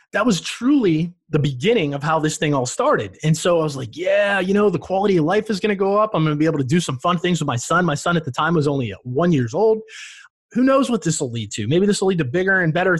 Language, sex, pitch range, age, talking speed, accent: English, male, 115-180 Hz, 30-49, 305 wpm, American